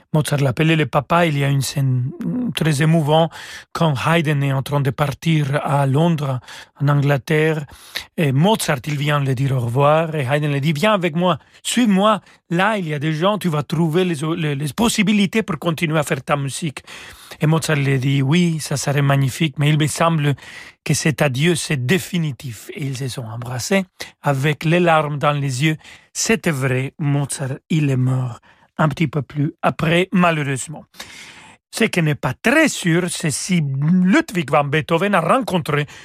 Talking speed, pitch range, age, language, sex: 185 wpm, 140-175 Hz, 40-59, French, male